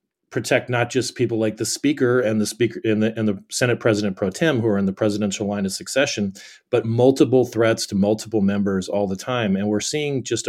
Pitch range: 100-120 Hz